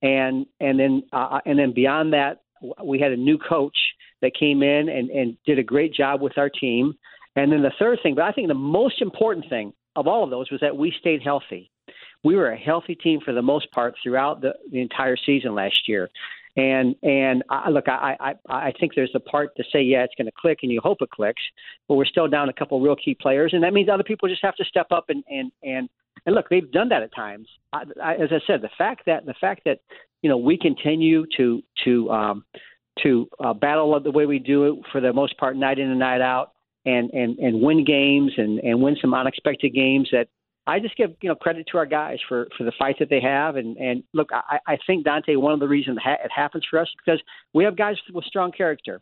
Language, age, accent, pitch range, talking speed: English, 50-69, American, 130-160 Hz, 245 wpm